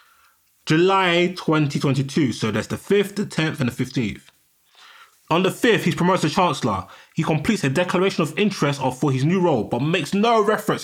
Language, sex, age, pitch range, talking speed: English, male, 20-39, 125-165 Hz, 175 wpm